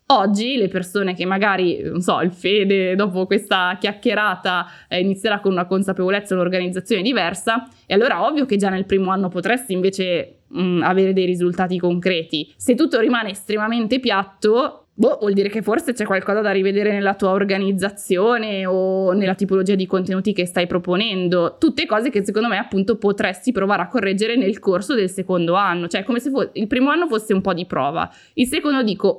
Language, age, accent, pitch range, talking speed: Italian, 20-39, native, 180-220 Hz, 185 wpm